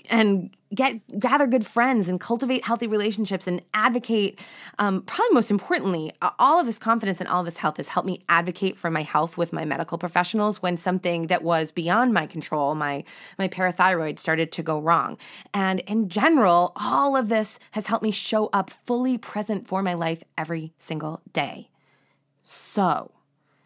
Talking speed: 175 wpm